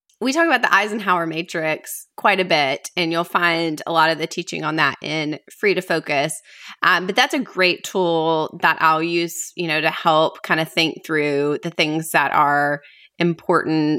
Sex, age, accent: female, 20-39, American